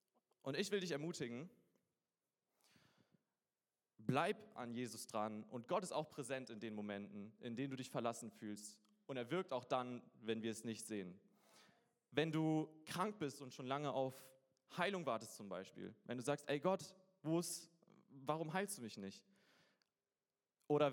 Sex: male